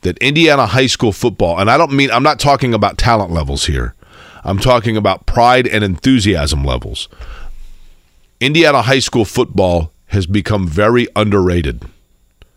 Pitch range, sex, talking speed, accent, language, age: 95-120 Hz, male, 150 wpm, American, English, 40-59